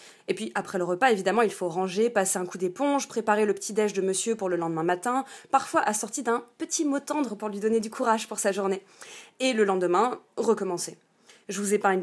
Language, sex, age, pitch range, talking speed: French, female, 20-39, 205-270 Hz, 215 wpm